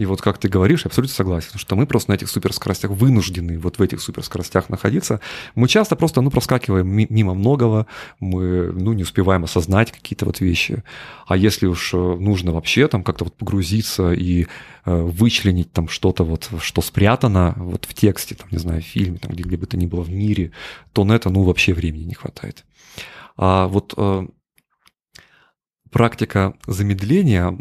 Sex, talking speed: male, 175 wpm